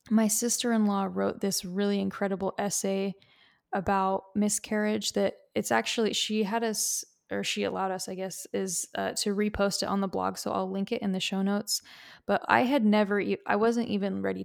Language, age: English, 20-39